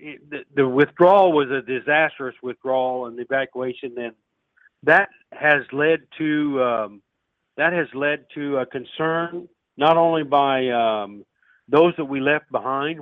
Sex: male